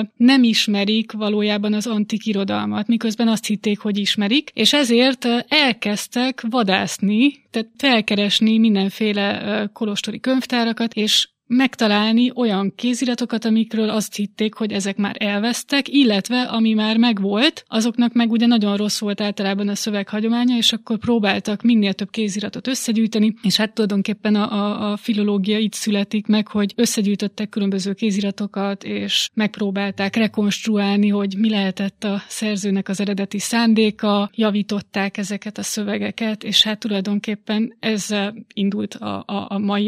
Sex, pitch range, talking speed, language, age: female, 205-225 Hz, 130 wpm, Hungarian, 20-39